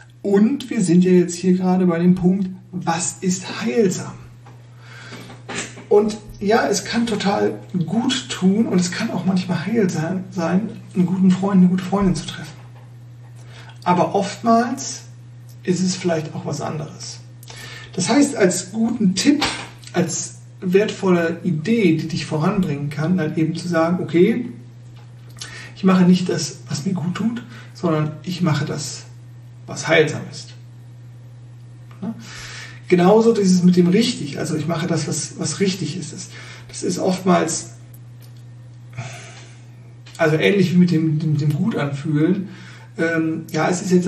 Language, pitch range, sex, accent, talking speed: German, 125-180 Hz, male, German, 145 wpm